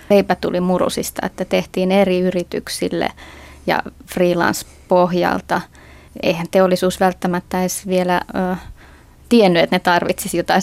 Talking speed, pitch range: 105 wpm, 180-195 Hz